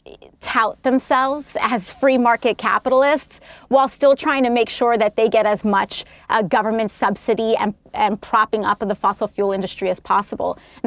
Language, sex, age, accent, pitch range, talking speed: English, female, 30-49, American, 205-245 Hz, 175 wpm